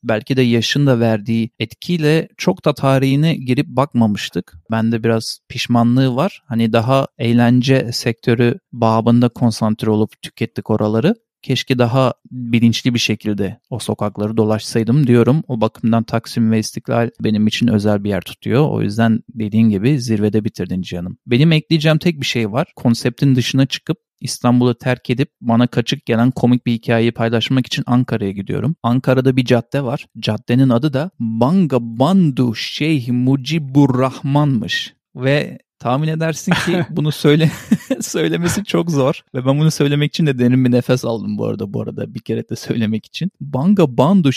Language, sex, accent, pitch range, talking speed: Turkish, male, native, 115-150 Hz, 150 wpm